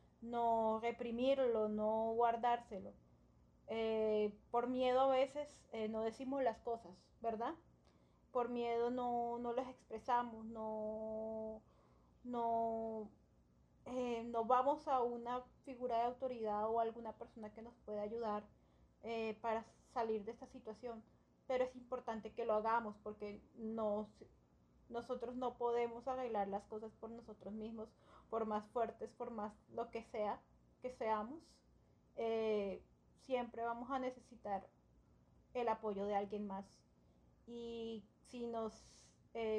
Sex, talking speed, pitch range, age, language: female, 125 wpm, 215-240 Hz, 30-49, Spanish